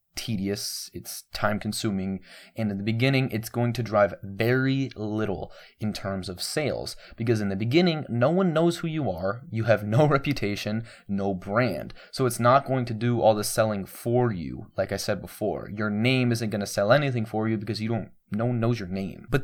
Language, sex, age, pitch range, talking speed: English, male, 20-39, 100-125 Hz, 205 wpm